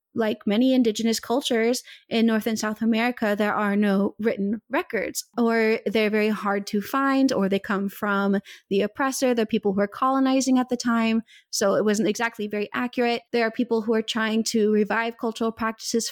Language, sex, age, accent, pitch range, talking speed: English, female, 20-39, American, 225-270 Hz, 185 wpm